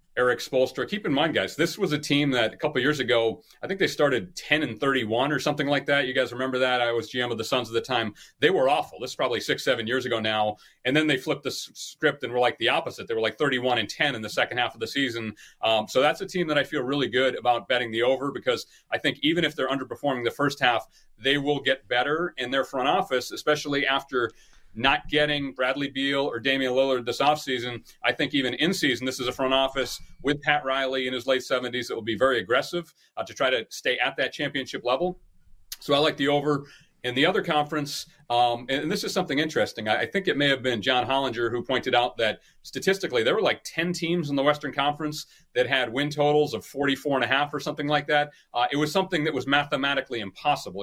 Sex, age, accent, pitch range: male, 30-49, American, 125-150 Hz